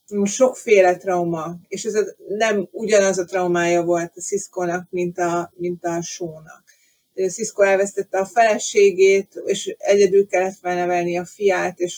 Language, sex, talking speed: Hungarian, female, 135 wpm